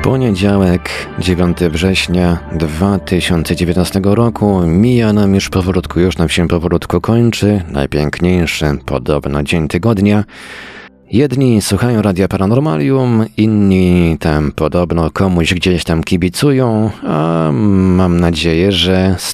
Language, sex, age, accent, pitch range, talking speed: Polish, male, 30-49, native, 85-100 Hz, 105 wpm